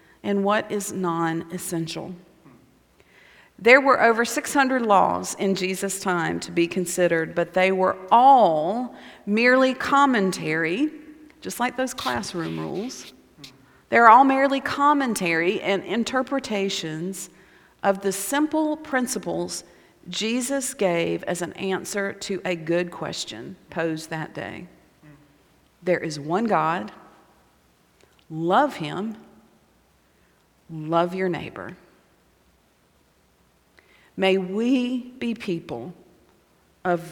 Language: English